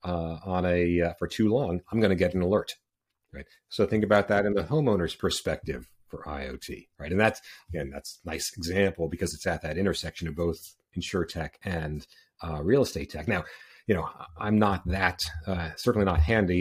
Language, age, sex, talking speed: English, 40-59, male, 200 wpm